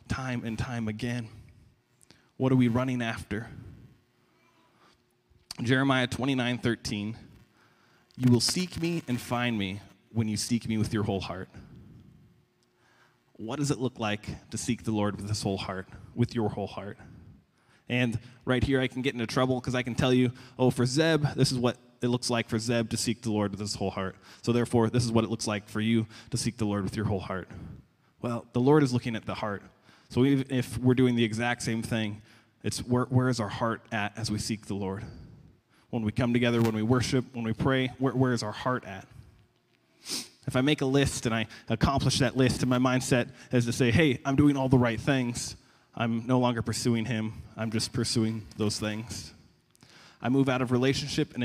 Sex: male